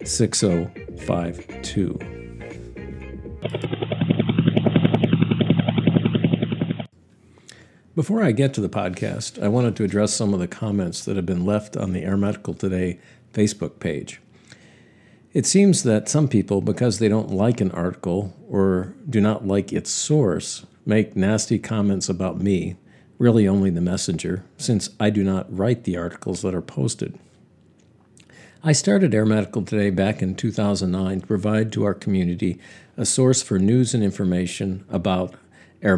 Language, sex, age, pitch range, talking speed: English, male, 50-69, 95-110 Hz, 140 wpm